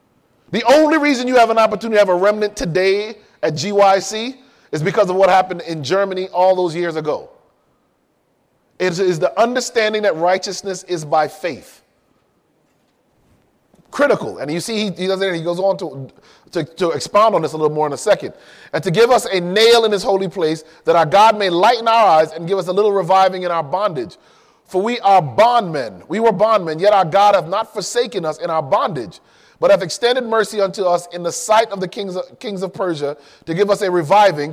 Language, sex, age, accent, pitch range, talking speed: English, male, 30-49, American, 175-215 Hz, 200 wpm